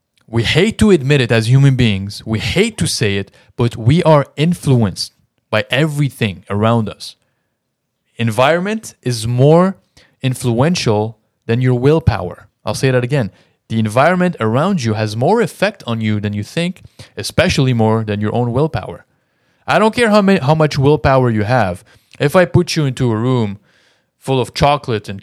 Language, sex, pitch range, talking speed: English, male, 110-145 Hz, 165 wpm